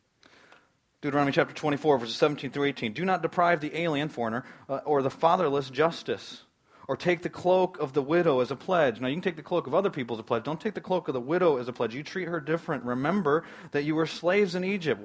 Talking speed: 245 wpm